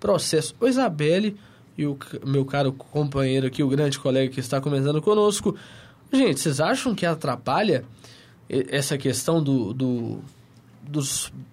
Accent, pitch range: Brazilian, 150-255 Hz